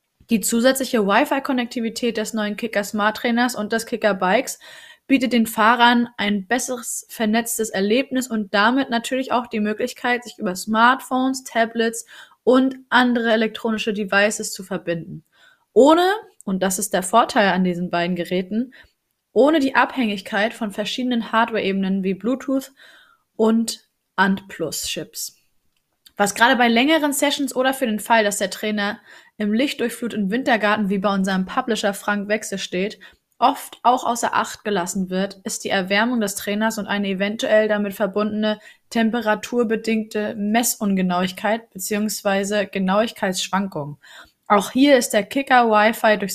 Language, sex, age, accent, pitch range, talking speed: German, female, 20-39, German, 200-245 Hz, 135 wpm